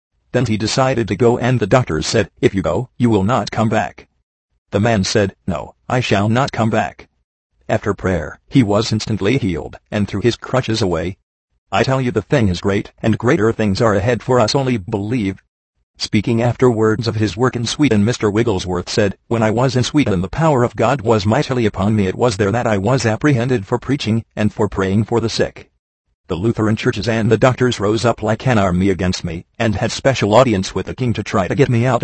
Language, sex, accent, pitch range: English, male, American, 100-120 Hz